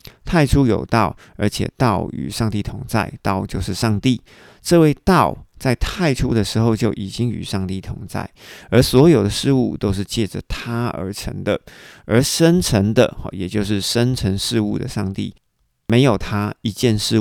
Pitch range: 100-125 Hz